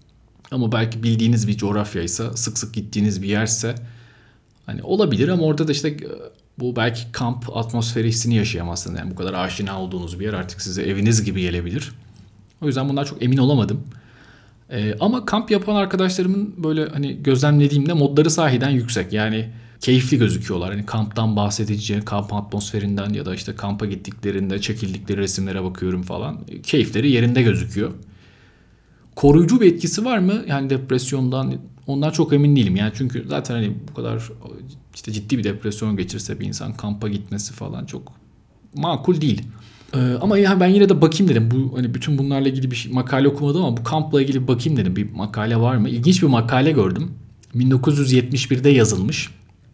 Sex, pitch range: male, 105-140 Hz